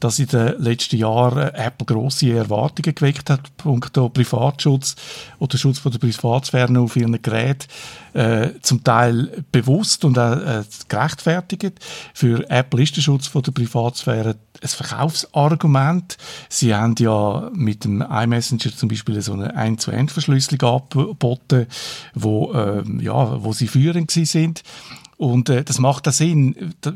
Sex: male